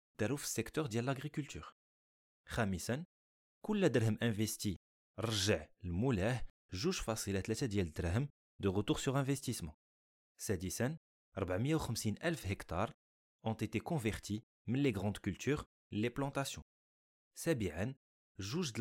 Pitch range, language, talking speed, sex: 95-135 Hz, French, 95 wpm, male